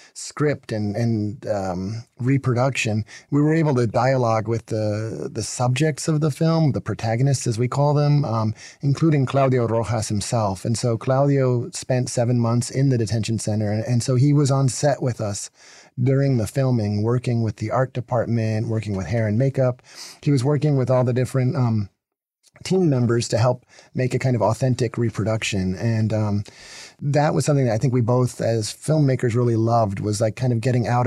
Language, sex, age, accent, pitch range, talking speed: English, male, 30-49, American, 110-130 Hz, 190 wpm